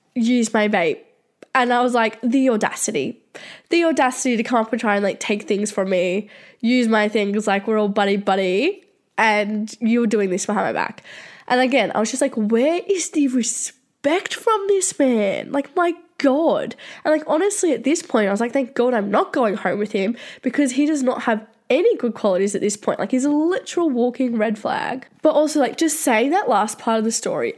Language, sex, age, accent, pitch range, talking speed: English, female, 10-29, Australian, 215-280 Hz, 215 wpm